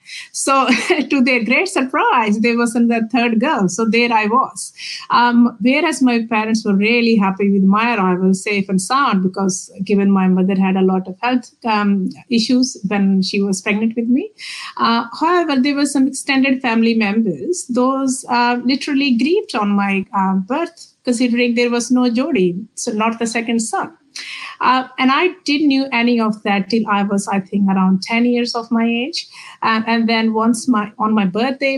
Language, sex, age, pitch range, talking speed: Punjabi, female, 50-69, 215-265 Hz, 185 wpm